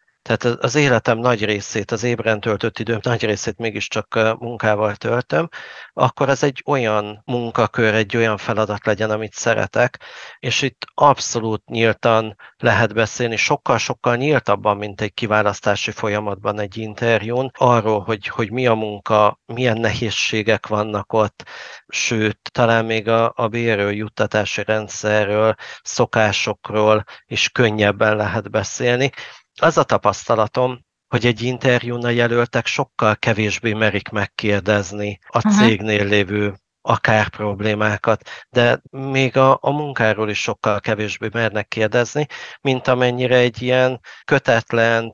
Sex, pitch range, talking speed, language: male, 105-120 Hz, 120 wpm, Hungarian